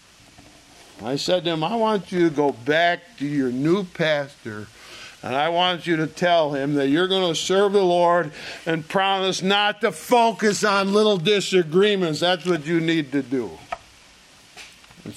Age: 50-69